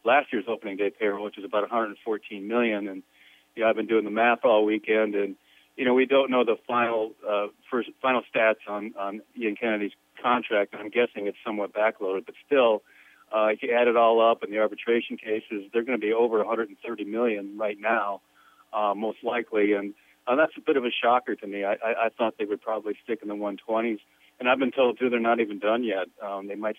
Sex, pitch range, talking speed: male, 105-115 Hz, 245 wpm